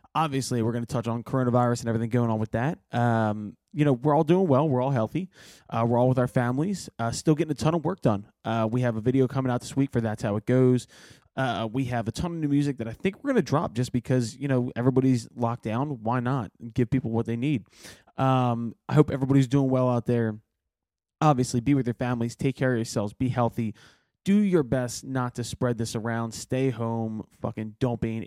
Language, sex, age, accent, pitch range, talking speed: English, male, 20-39, American, 115-135 Hz, 240 wpm